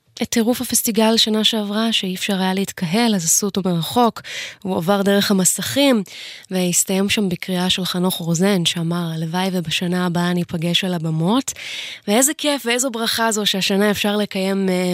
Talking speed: 160 wpm